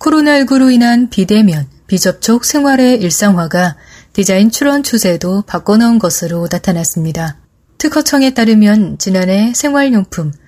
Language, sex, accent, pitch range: Korean, female, native, 185-240 Hz